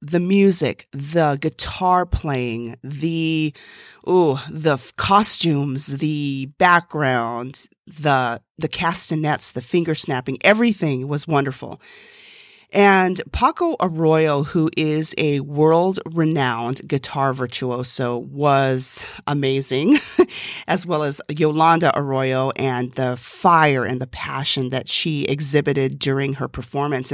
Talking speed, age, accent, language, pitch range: 110 wpm, 40-59, American, English, 145-195 Hz